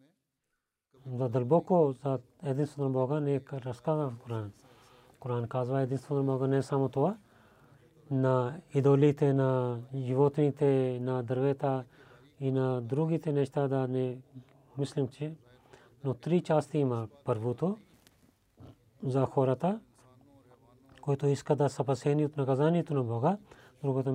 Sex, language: male, Bulgarian